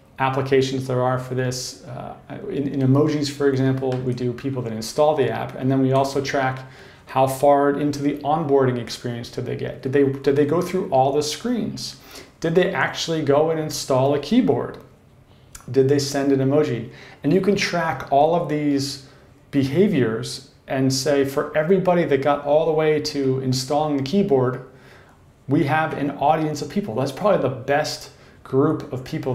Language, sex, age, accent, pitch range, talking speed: English, male, 40-59, American, 130-155 Hz, 180 wpm